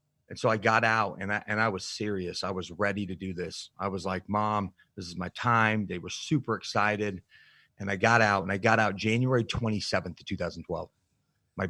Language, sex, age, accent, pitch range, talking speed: English, male, 30-49, American, 95-120 Hz, 210 wpm